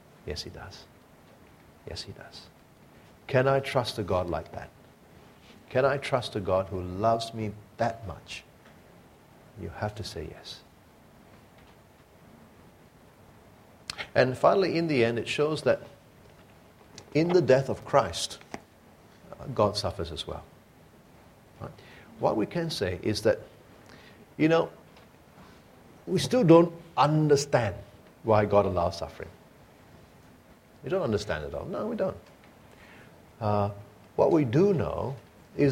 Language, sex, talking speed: English, male, 125 wpm